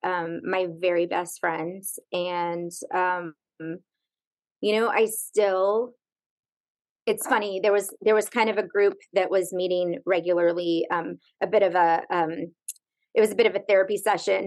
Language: English